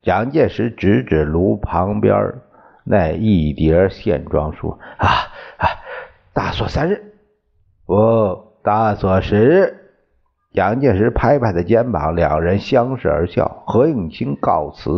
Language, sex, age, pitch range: Chinese, male, 50-69, 85-115 Hz